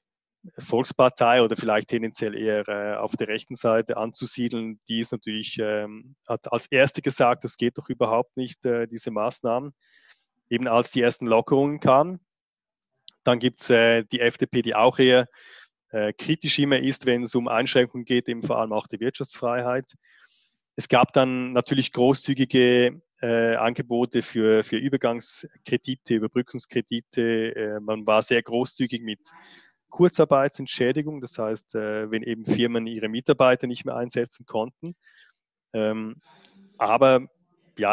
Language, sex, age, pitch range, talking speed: English, male, 20-39, 110-130 Hz, 140 wpm